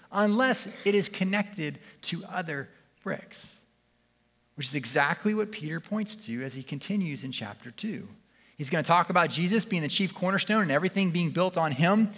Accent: American